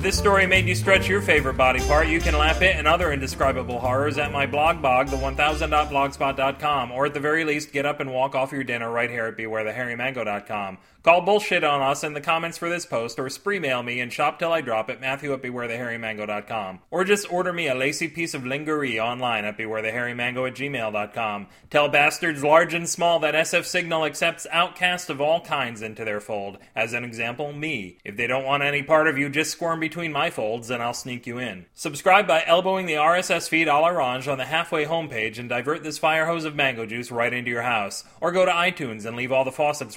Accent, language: American, English